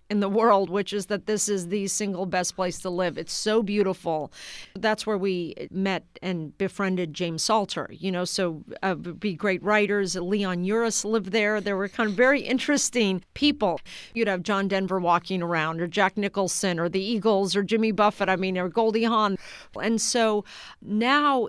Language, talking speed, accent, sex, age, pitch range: English, 185 wpm, American, female, 50-69, 175-210 Hz